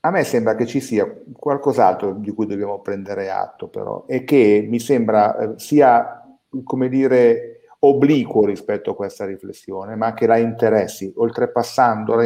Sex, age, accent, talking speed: male, 50-69, native, 145 wpm